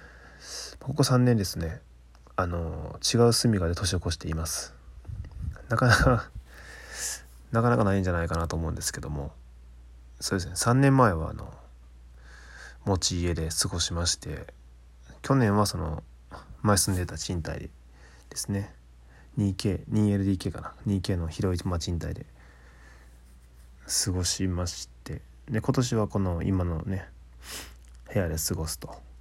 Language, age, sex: Japanese, 20-39, male